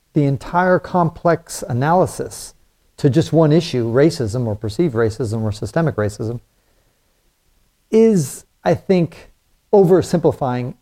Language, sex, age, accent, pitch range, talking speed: English, male, 40-59, American, 120-160 Hz, 105 wpm